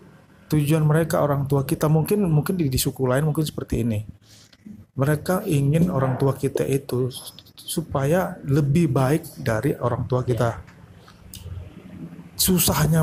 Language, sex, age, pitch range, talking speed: Indonesian, male, 30-49, 125-160 Hz, 130 wpm